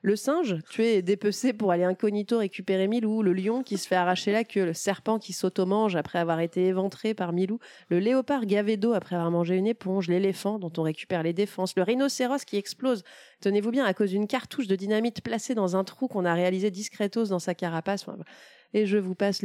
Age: 30-49